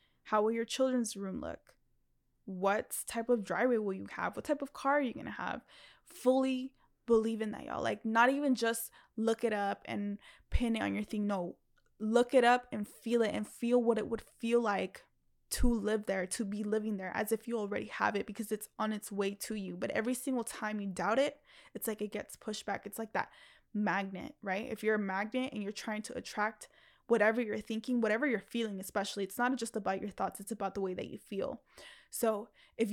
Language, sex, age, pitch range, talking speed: English, female, 20-39, 210-240 Hz, 225 wpm